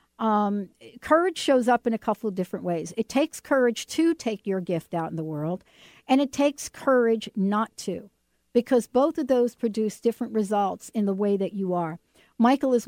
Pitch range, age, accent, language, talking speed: 190-240 Hz, 60-79, American, English, 195 wpm